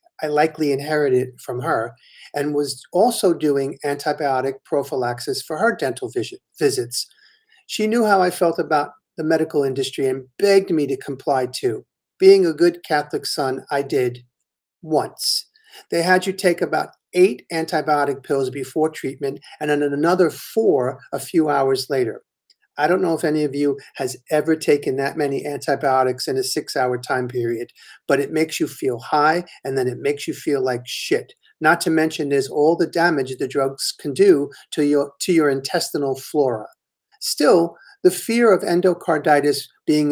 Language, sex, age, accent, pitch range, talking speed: English, male, 50-69, American, 140-175 Hz, 165 wpm